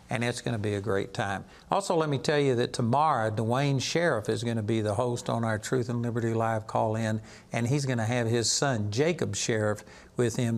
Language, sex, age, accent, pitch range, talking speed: English, male, 60-79, American, 110-130 Hz, 215 wpm